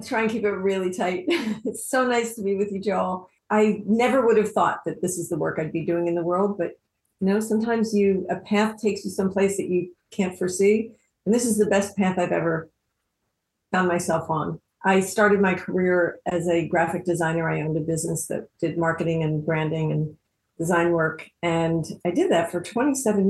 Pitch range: 170-210 Hz